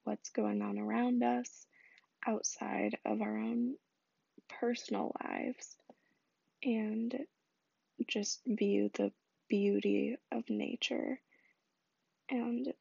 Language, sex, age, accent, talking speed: English, female, 20-39, American, 90 wpm